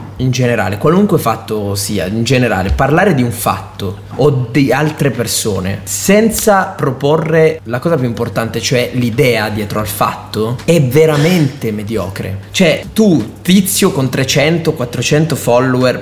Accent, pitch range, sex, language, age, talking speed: native, 115-165 Hz, male, Italian, 20-39, 135 wpm